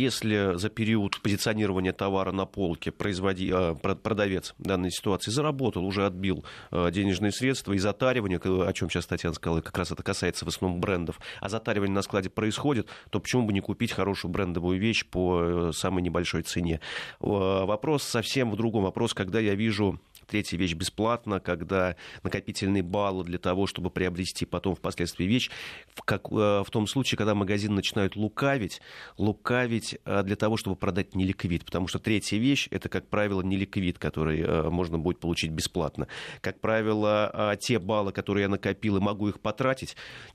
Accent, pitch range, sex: native, 90-105 Hz, male